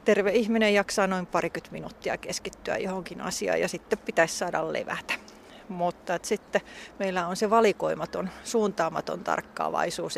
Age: 30-49